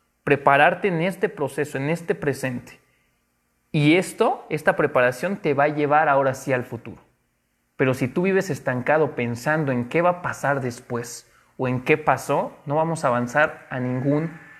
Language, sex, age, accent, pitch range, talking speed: Spanish, male, 30-49, Mexican, 135-180 Hz, 170 wpm